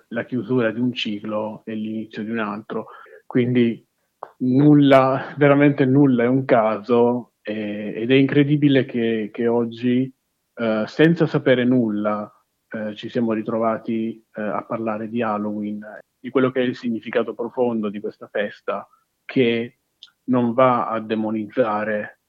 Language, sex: Italian, male